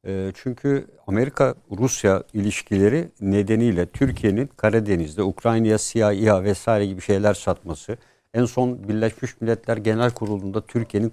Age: 60-79